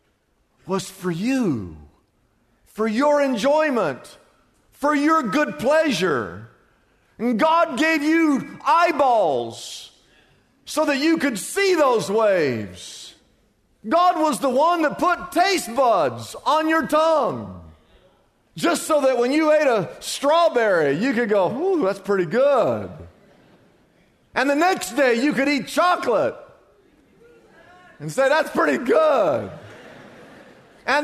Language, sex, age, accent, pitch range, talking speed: English, male, 50-69, American, 250-335 Hz, 120 wpm